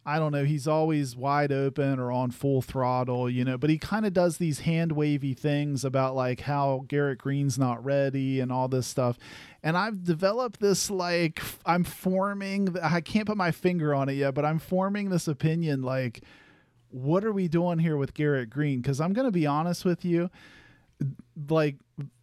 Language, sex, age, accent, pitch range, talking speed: English, male, 40-59, American, 135-180 Hz, 190 wpm